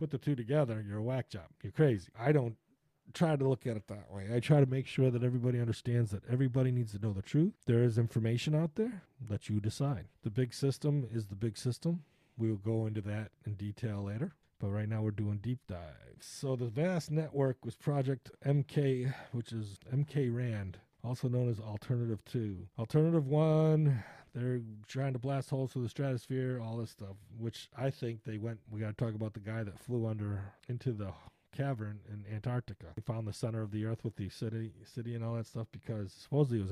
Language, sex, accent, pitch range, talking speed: English, male, American, 110-140 Hz, 215 wpm